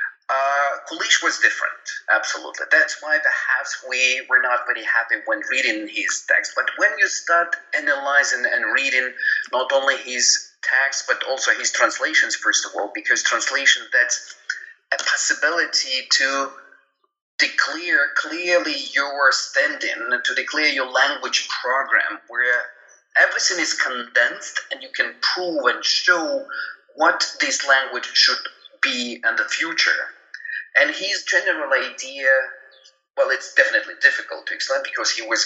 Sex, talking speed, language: male, 135 wpm, English